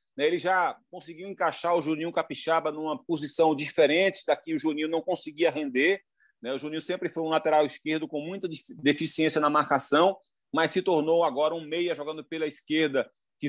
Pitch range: 150-195 Hz